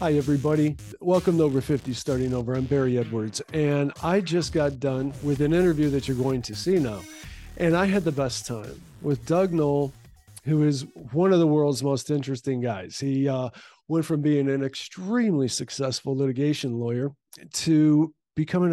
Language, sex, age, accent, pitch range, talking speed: English, male, 50-69, American, 135-165 Hz, 175 wpm